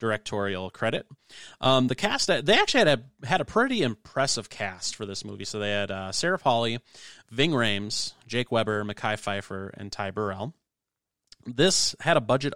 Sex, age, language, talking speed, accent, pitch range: male, 30-49, English, 175 wpm, American, 100-125 Hz